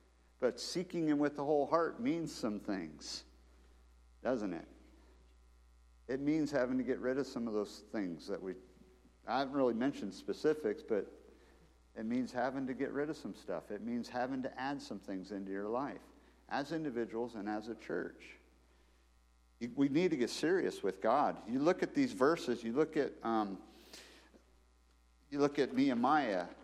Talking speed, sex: 170 wpm, male